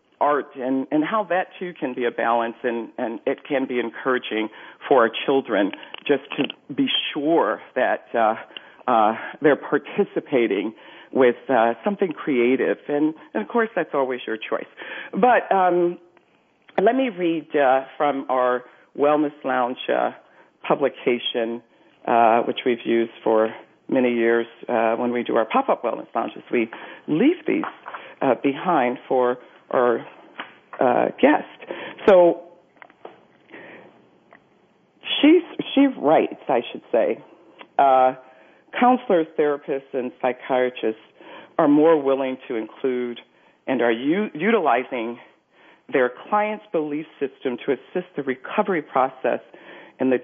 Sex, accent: female, American